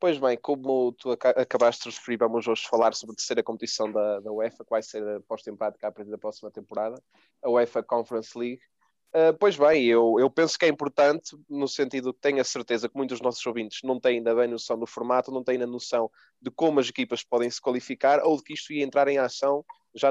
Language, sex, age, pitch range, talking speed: Portuguese, male, 20-39, 120-145 Hz, 235 wpm